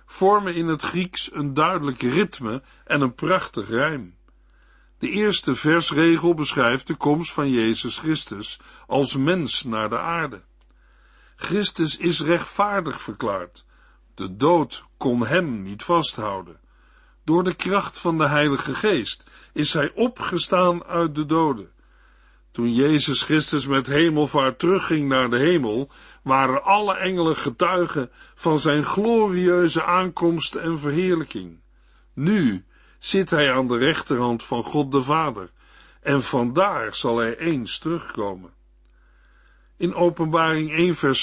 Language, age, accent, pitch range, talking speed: Dutch, 50-69, Dutch, 130-175 Hz, 125 wpm